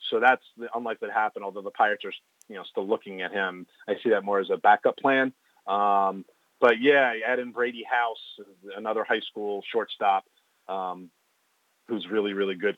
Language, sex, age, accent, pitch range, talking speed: English, male, 30-49, American, 105-140 Hz, 185 wpm